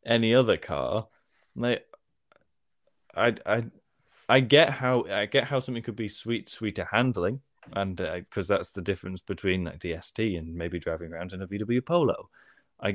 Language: English